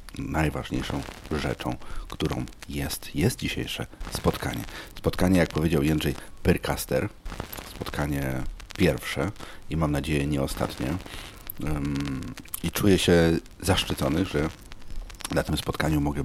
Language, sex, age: Polish, male, 40-59